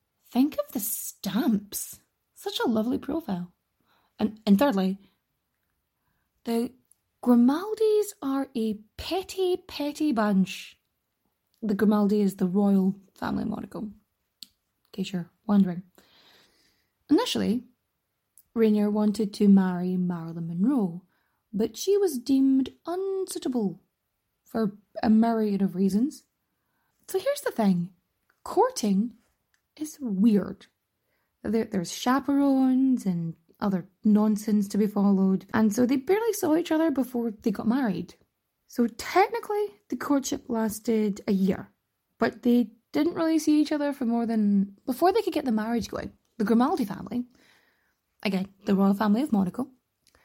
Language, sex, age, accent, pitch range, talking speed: English, female, 20-39, Irish, 205-280 Hz, 125 wpm